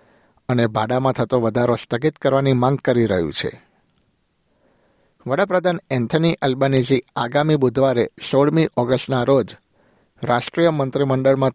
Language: Gujarati